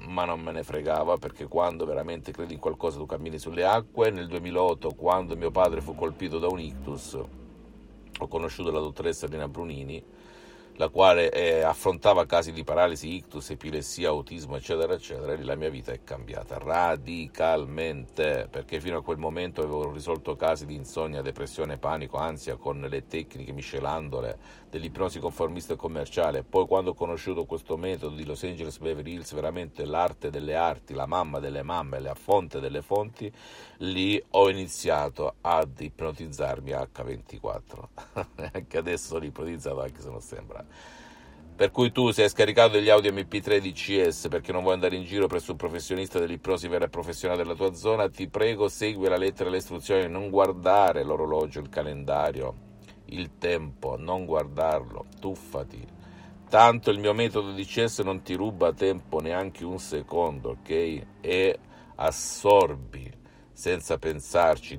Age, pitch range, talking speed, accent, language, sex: 50-69, 75-105 Hz, 155 wpm, native, Italian, male